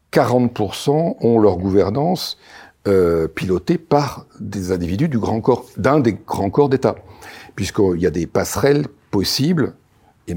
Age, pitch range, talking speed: 60-79, 95-125 Hz, 140 wpm